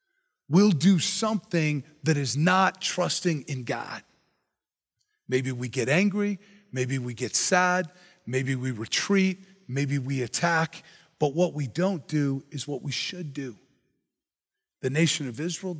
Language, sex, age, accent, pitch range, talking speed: English, male, 40-59, American, 150-210 Hz, 140 wpm